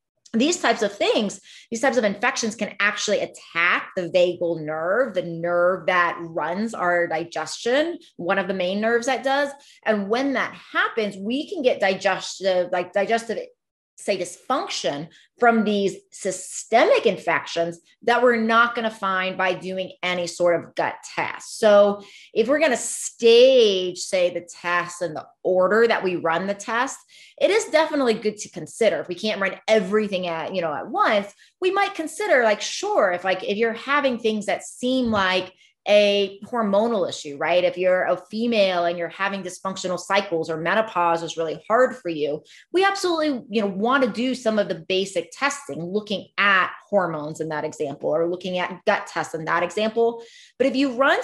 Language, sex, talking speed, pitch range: English, female, 180 wpm, 180-245 Hz